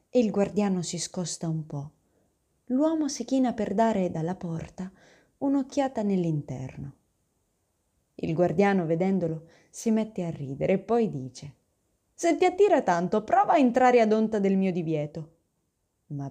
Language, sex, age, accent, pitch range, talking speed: Italian, female, 20-39, native, 160-240 Hz, 140 wpm